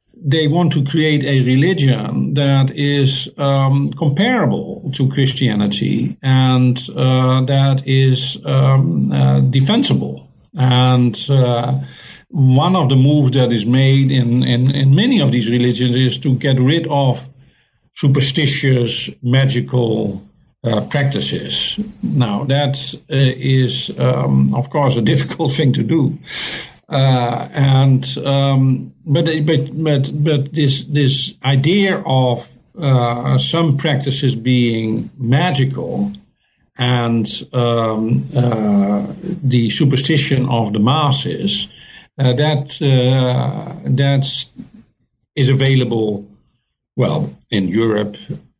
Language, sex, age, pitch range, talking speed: English, male, 50-69, 120-140 Hz, 105 wpm